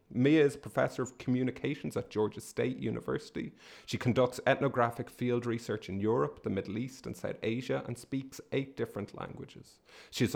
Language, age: English, 30-49